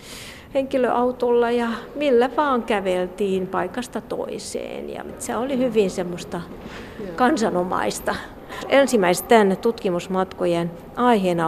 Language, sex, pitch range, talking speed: Finnish, female, 190-240 Hz, 90 wpm